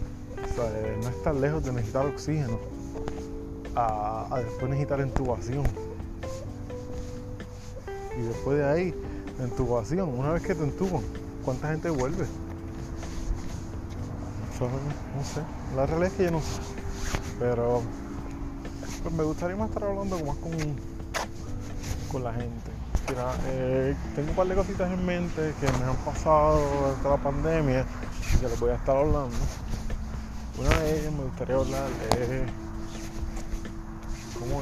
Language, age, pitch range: English, 20-39, 100-140 Hz